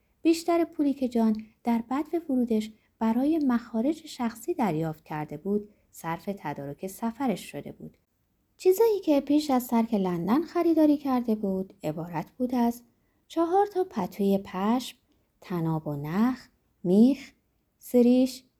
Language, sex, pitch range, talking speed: Persian, female, 175-270 Hz, 125 wpm